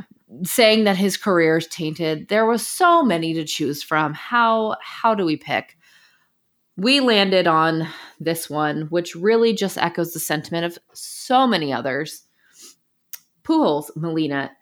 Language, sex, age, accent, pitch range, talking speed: English, female, 20-39, American, 155-200 Hz, 145 wpm